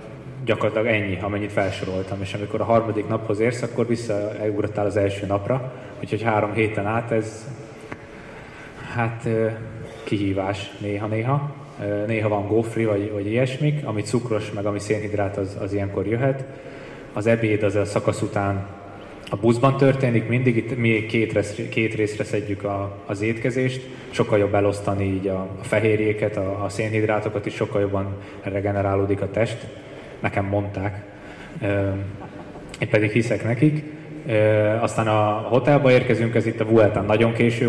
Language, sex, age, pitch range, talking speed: Hungarian, male, 20-39, 100-115 Hz, 140 wpm